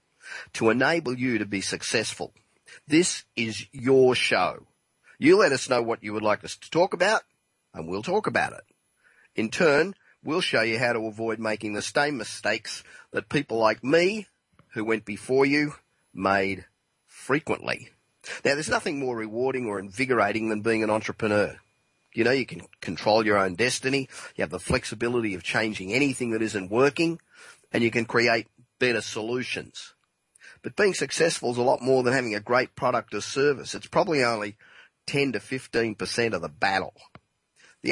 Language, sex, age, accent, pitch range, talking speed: English, male, 40-59, Australian, 105-130 Hz, 170 wpm